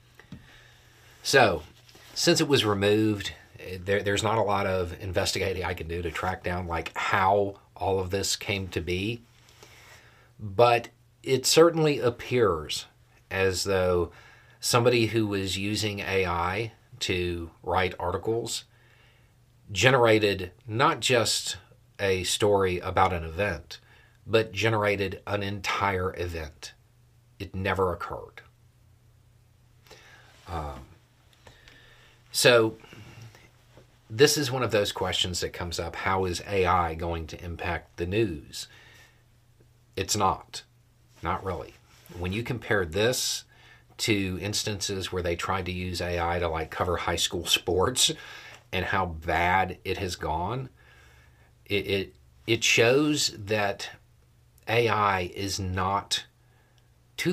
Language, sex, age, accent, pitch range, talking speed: English, male, 40-59, American, 95-120 Hz, 115 wpm